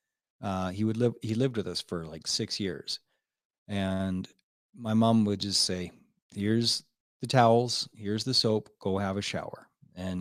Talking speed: 170 wpm